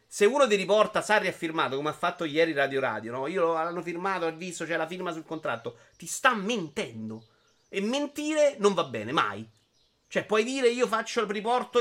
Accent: native